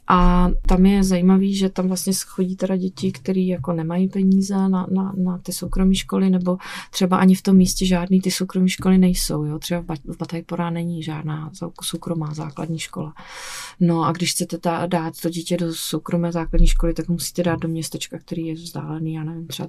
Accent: native